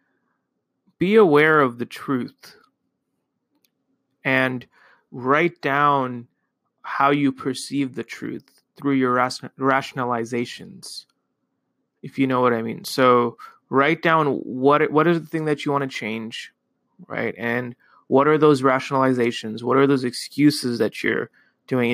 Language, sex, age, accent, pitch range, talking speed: English, male, 30-49, American, 125-150 Hz, 130 wpm